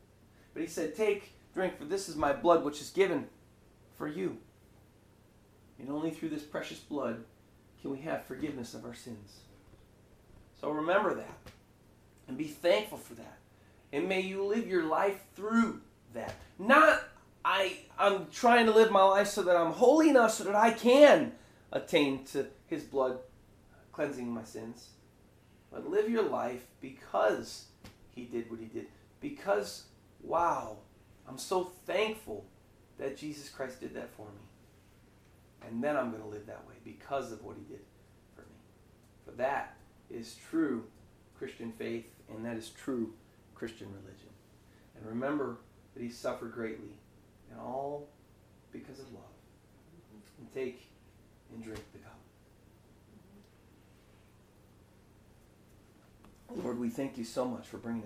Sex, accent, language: male, American, English